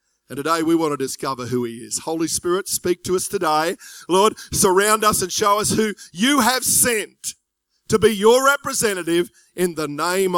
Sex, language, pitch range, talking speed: male, English, 155-220 Hz, 185 wpm